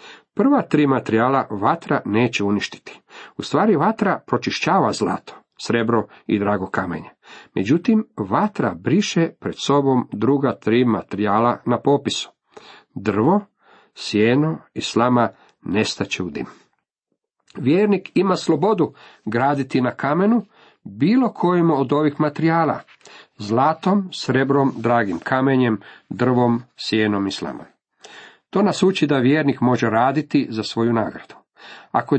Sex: male